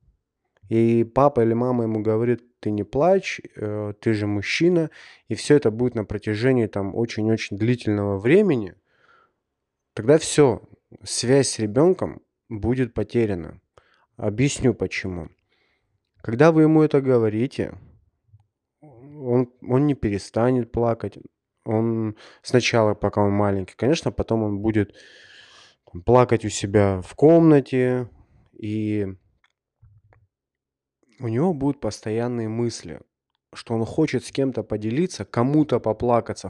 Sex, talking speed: male, 110 wpm